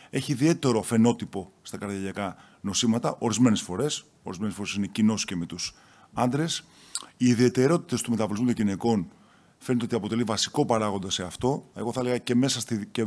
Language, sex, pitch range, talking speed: Greek, male, 100-130 Hz, 155 wpm